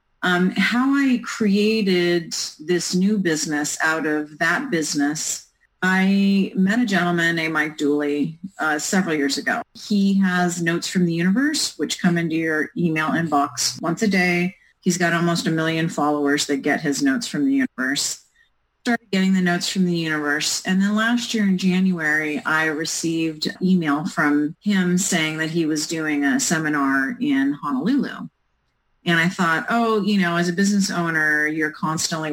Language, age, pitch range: English, 30-49, 150-185 Hz